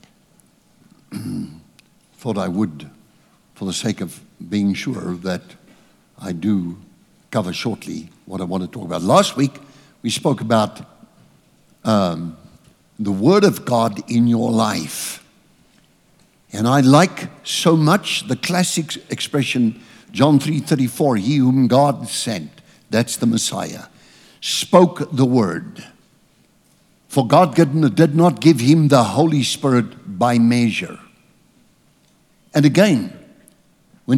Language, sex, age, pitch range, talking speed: English, male, 60-79, 120-160 Hz, 120 wpm